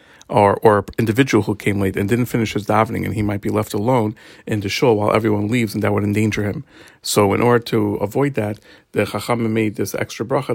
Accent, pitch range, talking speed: American, 105-120 Hz, 230 wpm